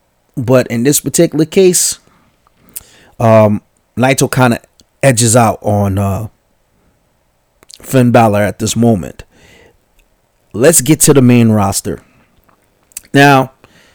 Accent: American